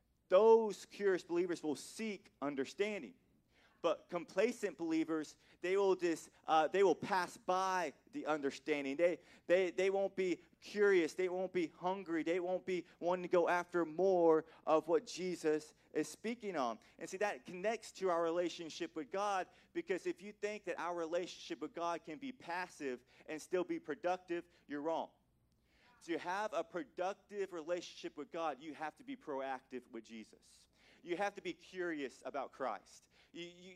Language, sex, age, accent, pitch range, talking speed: English, male, 30-49, American, 155-190 Hz, 165 wpm